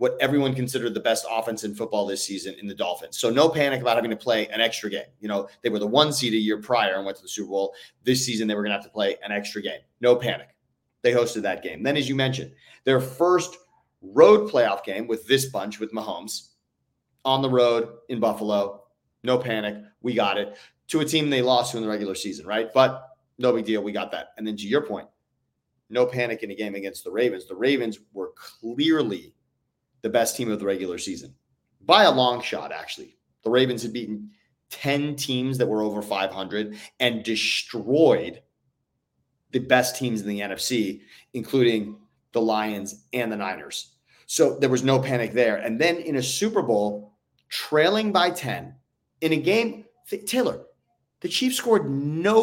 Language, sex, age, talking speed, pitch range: English, male, 30-49, 200 wpm, 105-150 Hz